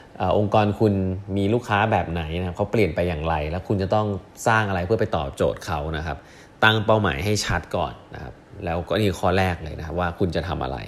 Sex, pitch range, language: male, 85-110 Hz, Thai